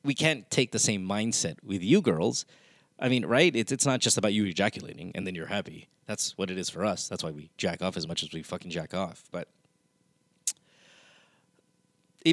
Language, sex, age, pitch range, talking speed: English, male, 30-49, 95-135 Hz, 210 wpm